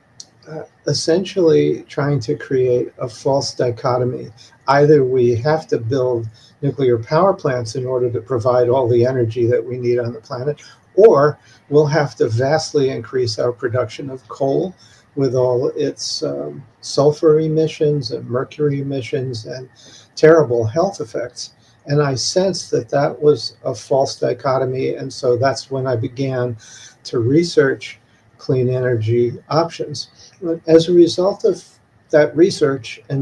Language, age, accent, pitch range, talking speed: English, 50-69, American, 120-150 Hz, 145 wpm